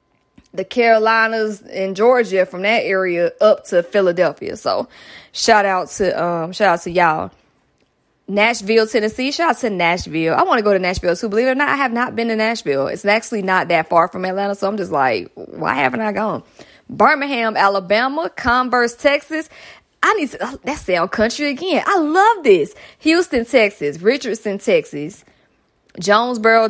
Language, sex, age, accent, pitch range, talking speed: English, female, 20-39, American, 195-280 Hz, 175 wpm